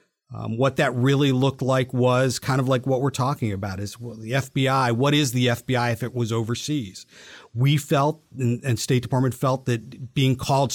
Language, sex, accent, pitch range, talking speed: English, male, American, 120-140 Hz, 200 wpm